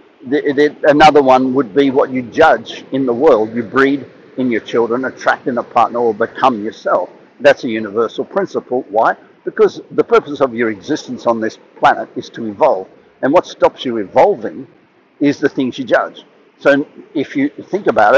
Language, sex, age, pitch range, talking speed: English, male, 60-79, 120-150 Hz, 180 wpm